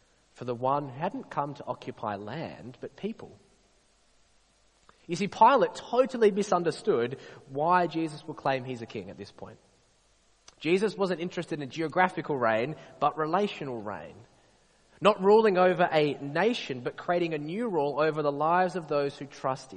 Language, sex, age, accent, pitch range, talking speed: English, male, 20-39, Australian, 145-205 Hz, 160 wpm